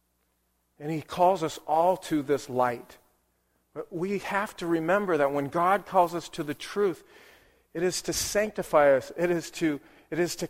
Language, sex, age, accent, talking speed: English, male, 40-59, American, 170 wpm